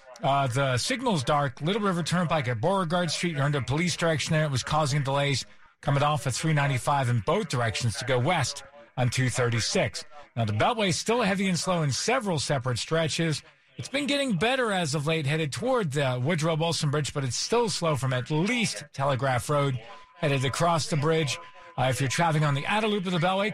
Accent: American